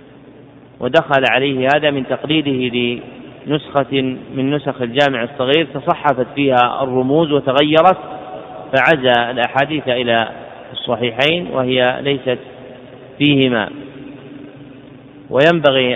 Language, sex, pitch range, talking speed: Arabic, male, 125-140 Hz, 85 wpm